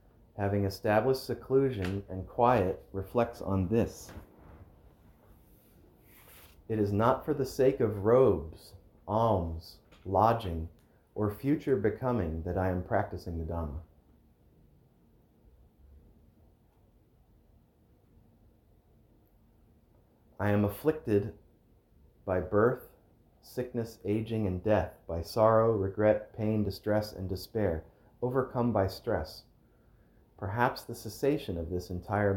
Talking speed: 95 wpm